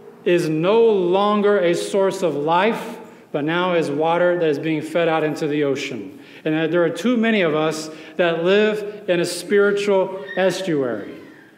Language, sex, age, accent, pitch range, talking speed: English, male, 40-59, American, 150-190 Hz, 165 wpm